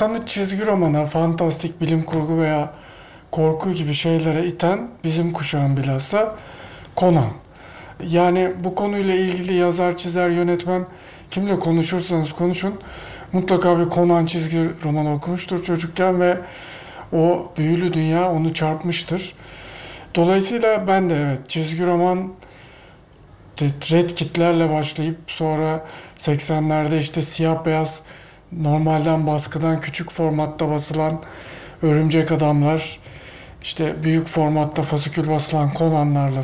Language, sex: Turkish, male